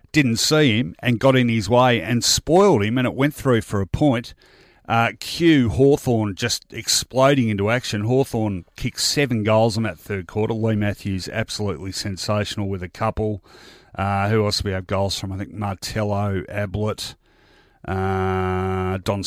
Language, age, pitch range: English, 40-59, 100-125 Hz